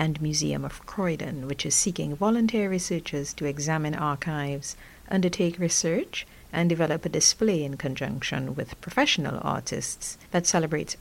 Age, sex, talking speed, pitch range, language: 60-79, female, 135 wpm, 145-185 Hz, English